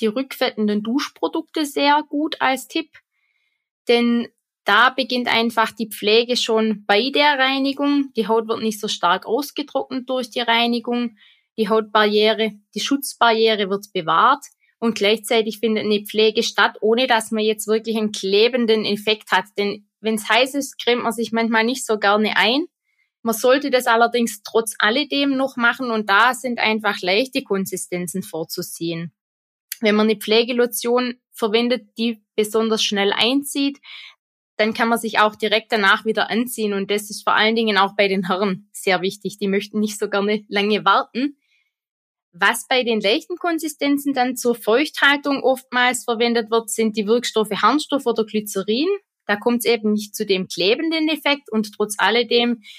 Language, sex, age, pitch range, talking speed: German, female, 20-39, 210-255 Hz, 160 wpm